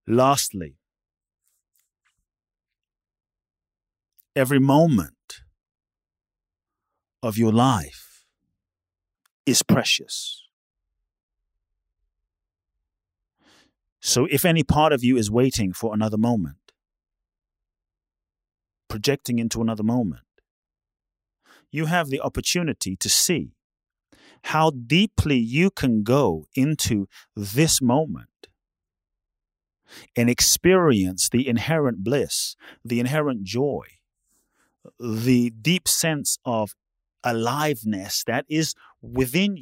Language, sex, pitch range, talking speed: English, male, 95-140 Hz, 80 wpm